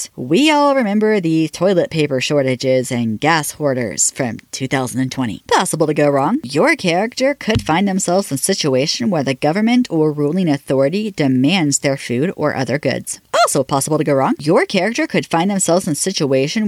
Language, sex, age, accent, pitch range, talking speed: English, female, 40-59, American, 140-200 Hz, 175 wpm